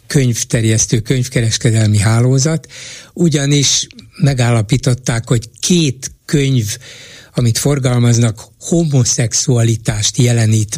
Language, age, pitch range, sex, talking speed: Hungarian, 60-79, 115-140 Hz, male, 65 wpm